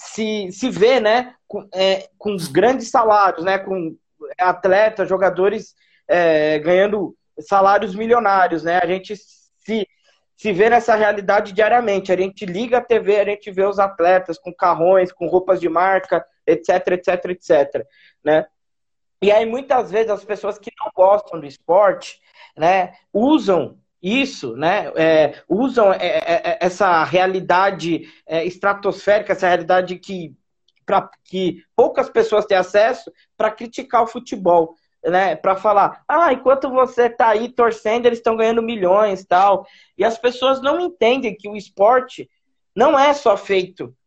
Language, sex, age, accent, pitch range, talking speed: Portuguese, male, 20-39, Brazilian, 185-235 Hz, 145 wpm